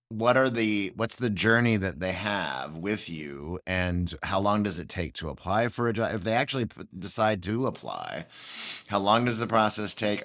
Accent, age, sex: American, 30-49, male